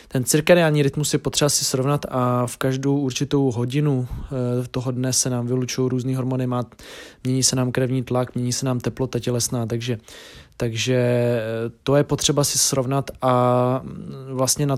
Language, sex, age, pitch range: Czech, male, 20-39, 125-135 Hz